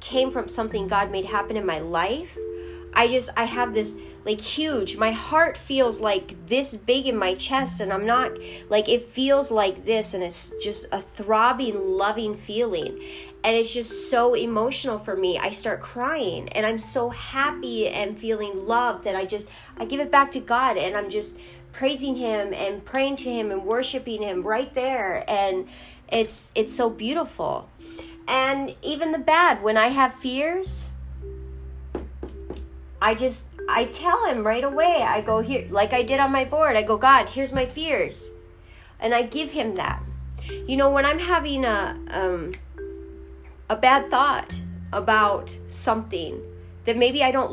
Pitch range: 185-265 Hz